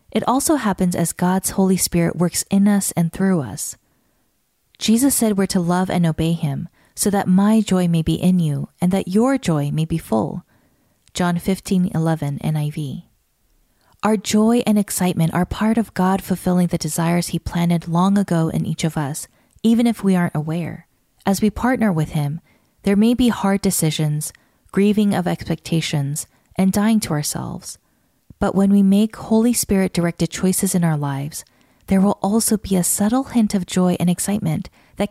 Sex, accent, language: female, American, English